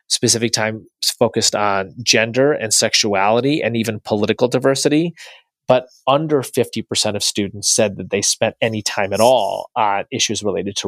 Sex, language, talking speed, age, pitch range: male, English, 155 wpm, 30-49, 105-125 Hz